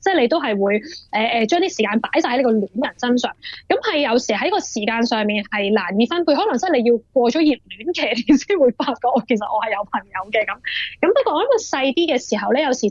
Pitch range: 220-305 Hz